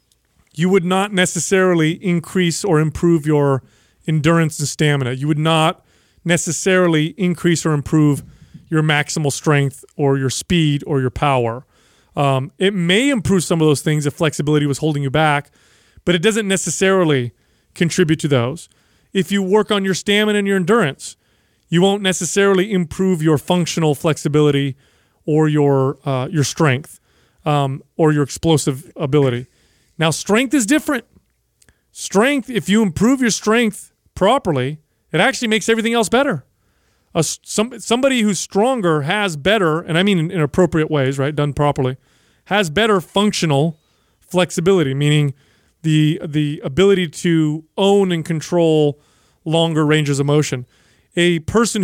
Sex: male